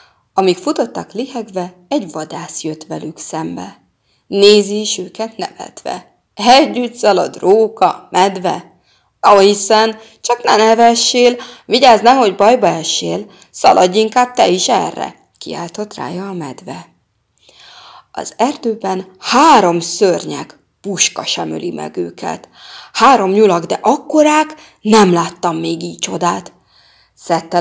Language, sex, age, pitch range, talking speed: Hungarian, female, 30-49, 170-225 Hz, 115 wpm